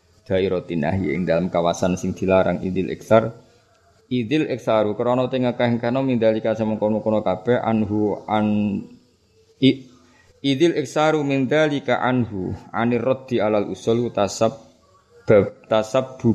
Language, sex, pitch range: Indonesian, male, 100-120 Hz